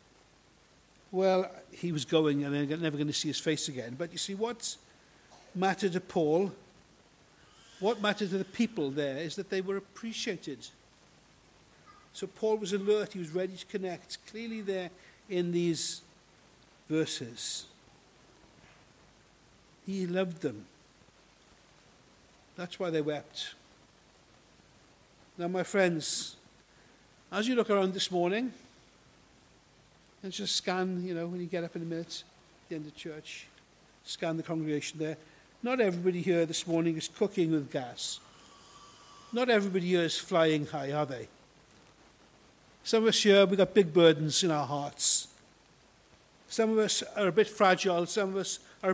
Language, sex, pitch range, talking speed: English, male, 165-205 Hz, 145 wpm